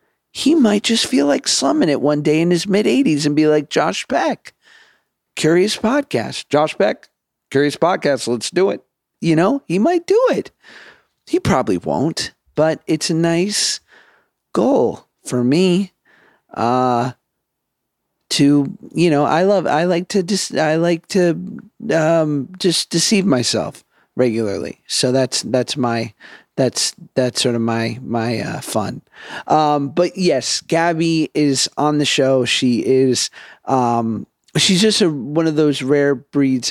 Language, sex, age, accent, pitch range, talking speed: English, male, 40-59, American, 130-170 Hz, 150 wpm